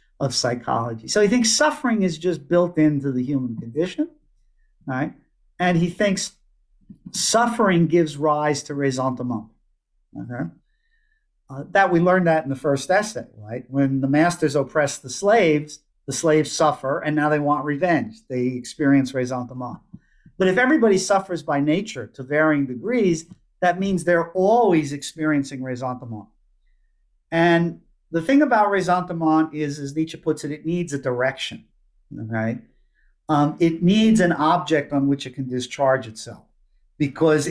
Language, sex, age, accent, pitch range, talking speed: English, male, 50-69, American, 135-175 Hz, 150 wpm